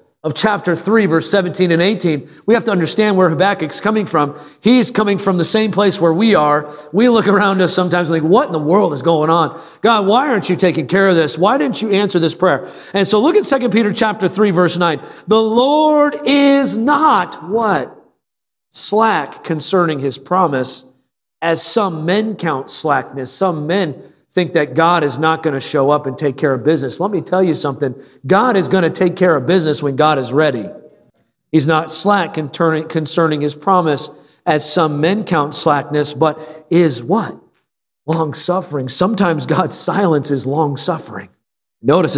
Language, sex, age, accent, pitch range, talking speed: English, male, 40-59, American, 150-195 Hz, 185 wpm